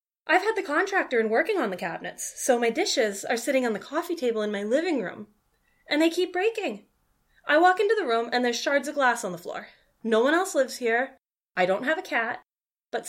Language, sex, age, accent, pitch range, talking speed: English, female, 20-39, American, 220-315 Hz, 230 wpm